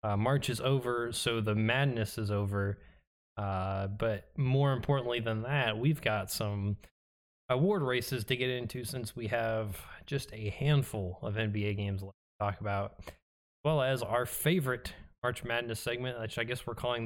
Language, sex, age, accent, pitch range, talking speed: English, male, 20-39, American, 105-140 Hz, 170 wpm